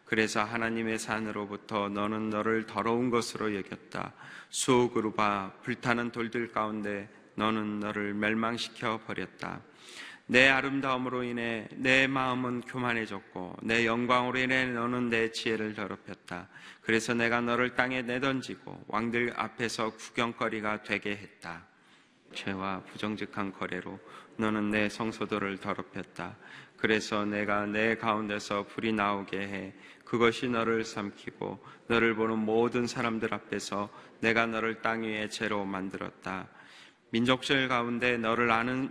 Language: Korean